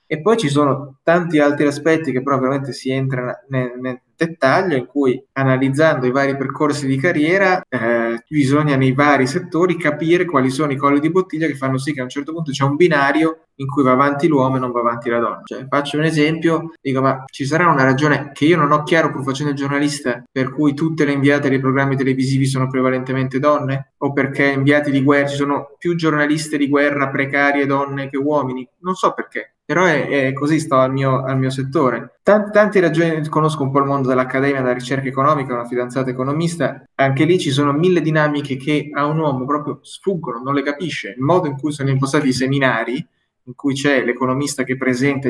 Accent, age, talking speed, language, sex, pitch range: native, 20-39, 210 wpm, Italian, male, 130-150 Hz